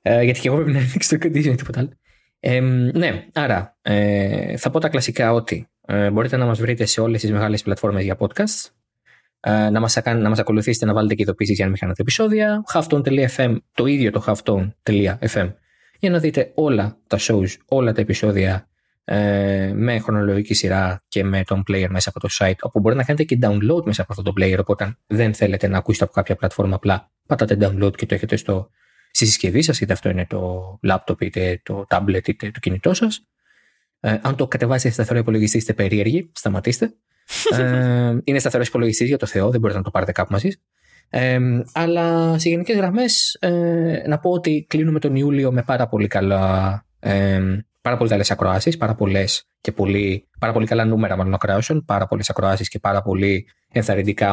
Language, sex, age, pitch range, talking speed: Greek, male, 20-39, 100-130 Hz, 185 wpm